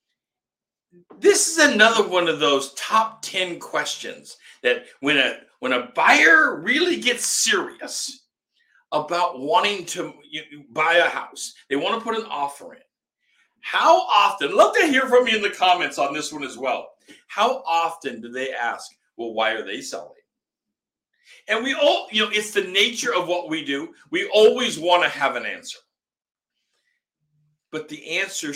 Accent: American